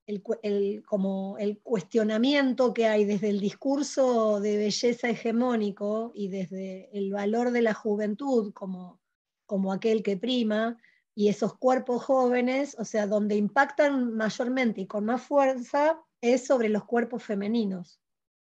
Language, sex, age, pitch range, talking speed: Spanish, female, 20-39, 205-255 Hz, 135 wpm